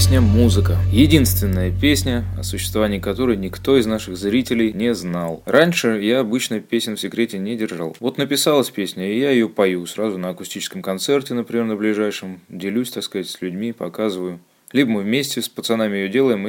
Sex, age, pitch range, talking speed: male, 20-39, 90-115 Hz, 170 wpm